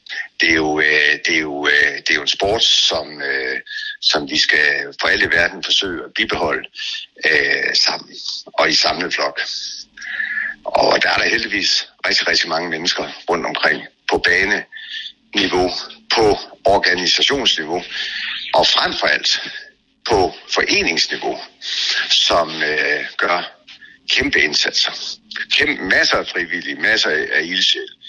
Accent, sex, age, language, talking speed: native, male, 60-79, Danish, 125 wpm